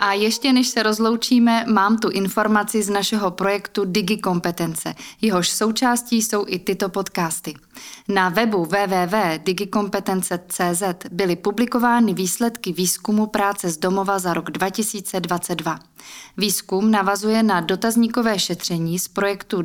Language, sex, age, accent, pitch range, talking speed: Czech, female, 20-39, native, 180-225 Hz, 115 wpm